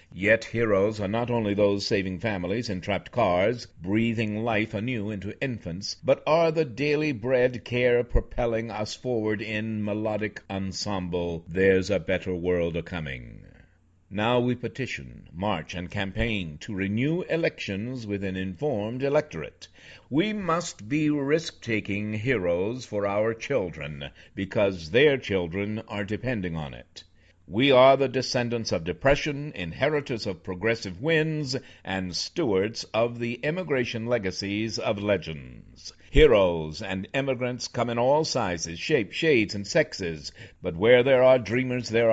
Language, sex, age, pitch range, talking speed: English, male, 60-79, 95-130 Hz, 135 wpm